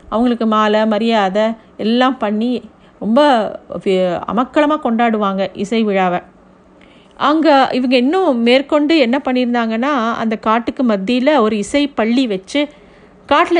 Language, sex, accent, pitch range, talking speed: Tamil, female, native, 220-280 Hz, 105 wpm